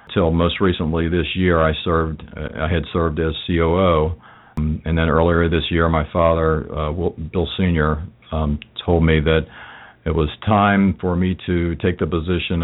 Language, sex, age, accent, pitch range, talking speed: English, male, 50-69, American, 80-90 Hz, 180 wpm